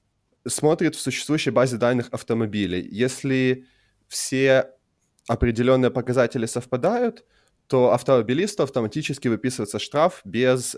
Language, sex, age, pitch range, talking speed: Russian, male, 20-39, 110-135 Hz, 95 wpm